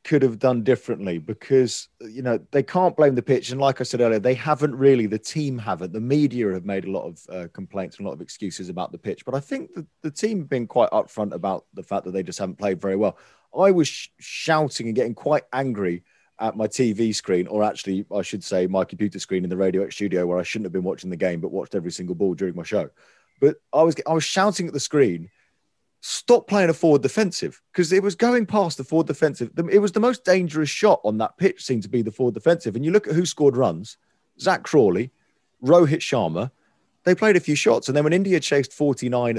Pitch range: 110-165 Hz